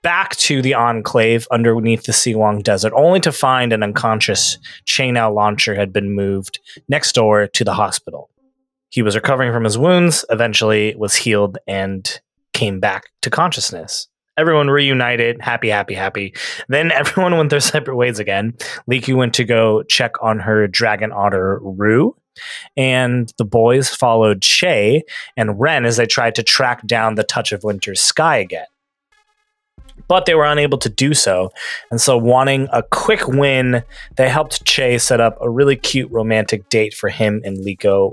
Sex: male